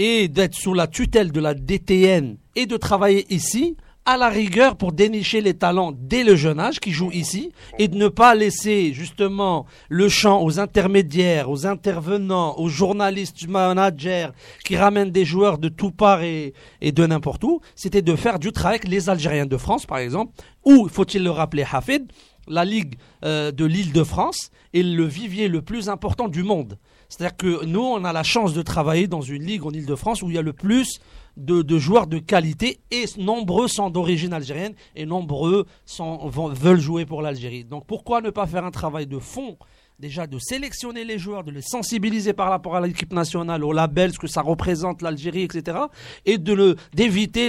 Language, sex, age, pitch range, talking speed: French, male, 40-59, 160-205 Hz, 195 wpm